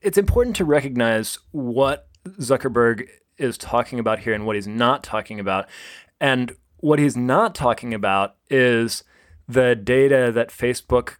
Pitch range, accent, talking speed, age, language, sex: 105-130 Hz, American, 145 wpm, 20-39, English, male